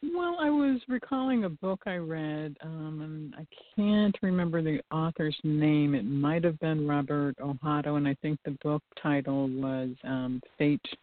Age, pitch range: 50-69, 135-160 Hz